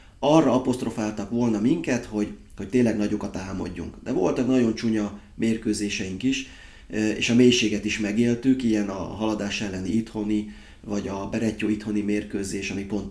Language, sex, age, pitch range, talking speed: Hungarian, male, 30-49, 100-115 Hz, 145 wpm